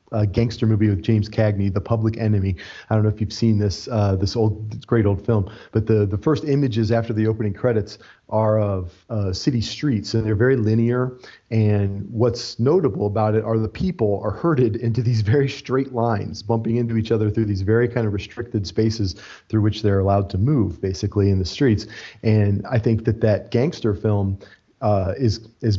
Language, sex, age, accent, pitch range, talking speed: English, male, 40-59, American, 100-120 Hz, 200 wpm